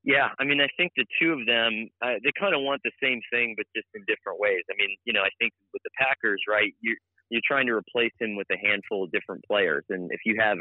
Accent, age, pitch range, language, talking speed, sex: American, 30-49, 95-125 Hz, English, 270 wpm, male